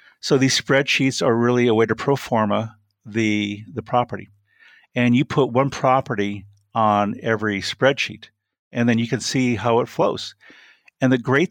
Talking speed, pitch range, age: 165 wpm, 110-135 Hz, 50-69